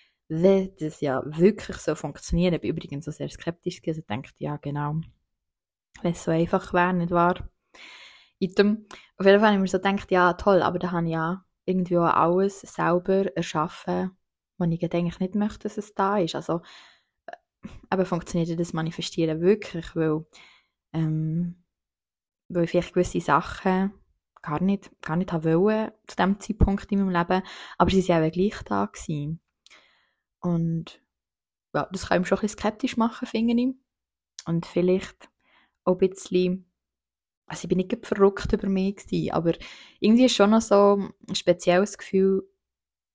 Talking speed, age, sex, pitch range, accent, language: 165 wpm, 20-39, female, 165-195 Hz, Swiss, German